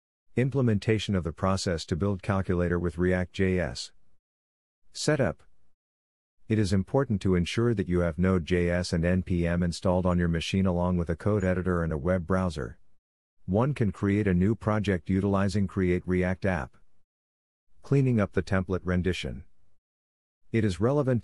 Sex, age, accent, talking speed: male, 50-69, American, 145 wpm